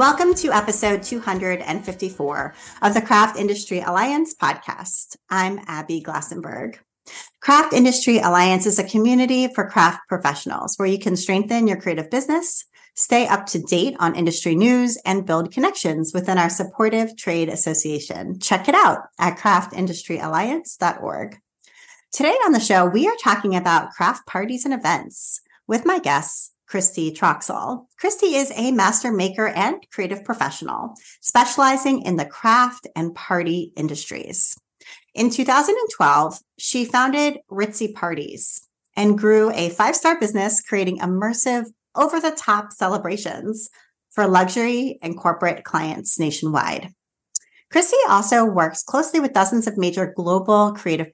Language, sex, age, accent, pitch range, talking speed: English, female, 30-49, American, 180-250 Hz, 130 wpm